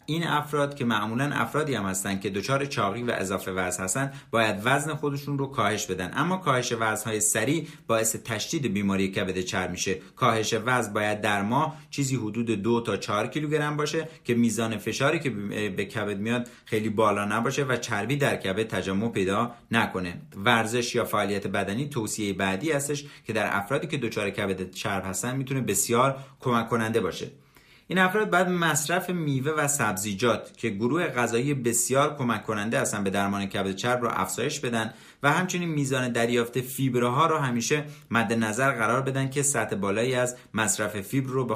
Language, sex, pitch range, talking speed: Persian, male, 105-140 Hz, 175 wpm